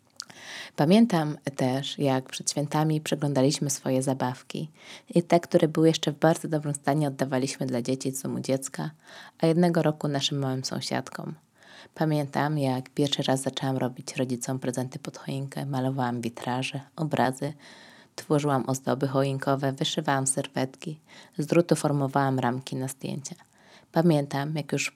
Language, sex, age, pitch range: Polish, female, 20-39, 135-165 Hz